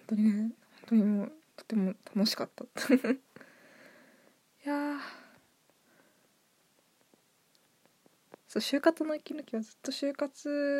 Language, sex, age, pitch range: Japanese, female, 20-39, 225-280 Hz